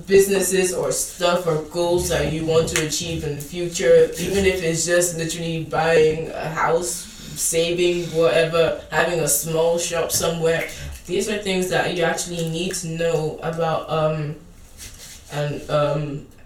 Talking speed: 150 wpm